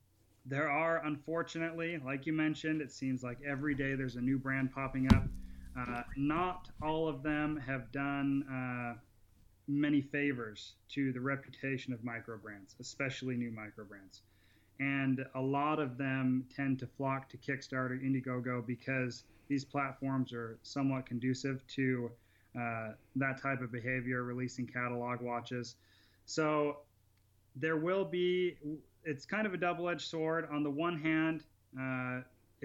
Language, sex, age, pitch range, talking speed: English, male, 30-49, 125-145 Hz, 145 wpm